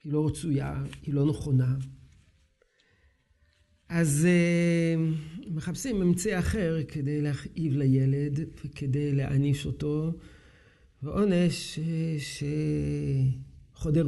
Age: 50-69